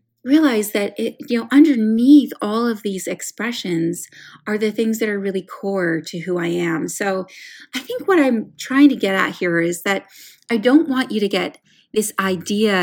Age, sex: 30-49, female